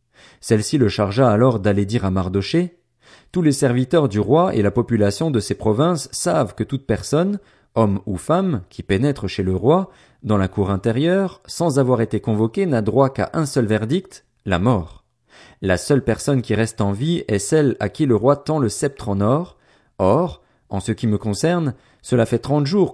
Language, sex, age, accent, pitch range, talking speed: French, male, 40-59, French, 105-145 Hz, 200 wpm